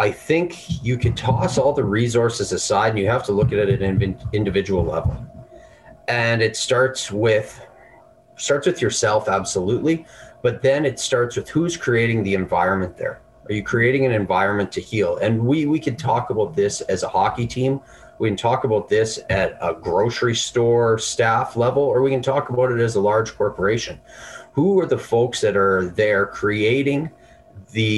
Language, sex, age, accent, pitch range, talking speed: English, male, 30-49, American, 110-150 Hz, 185 wpm